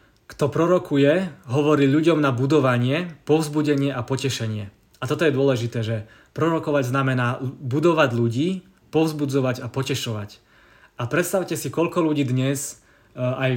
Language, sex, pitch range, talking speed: Czech, male, 125-145 Hz, 125 wpm